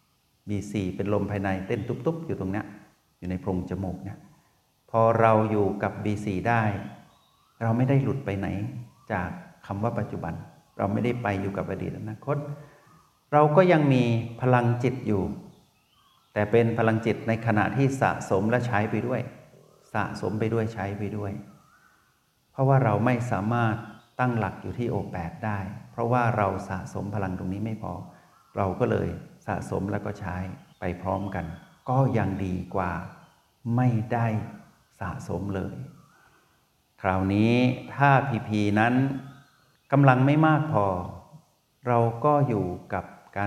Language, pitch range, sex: Thai, 100-125 Hz, male